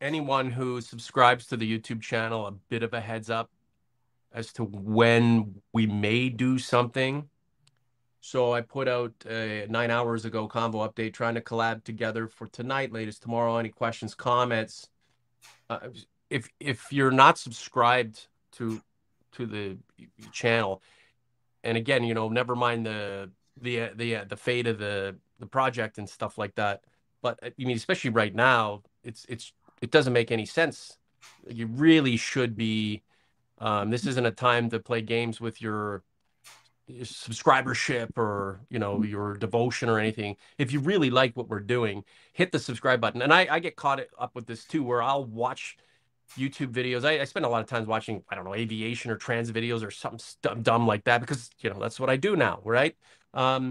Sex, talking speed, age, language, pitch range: male, 180 wpm, 30-49, English, 110-125 Hz